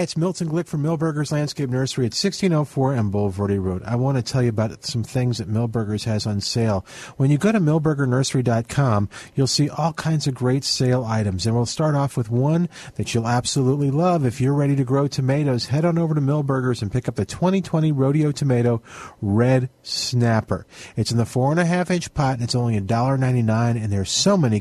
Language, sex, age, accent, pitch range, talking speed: English, male, 50-69, American, 110-145 Hz, 205 wpm